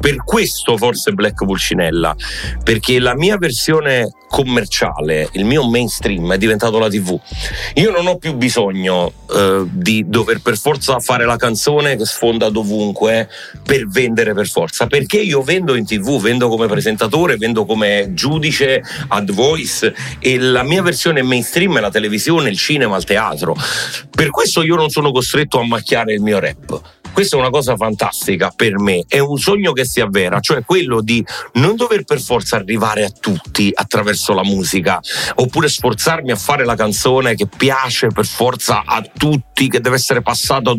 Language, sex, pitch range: Italian, male, 110-140 Hz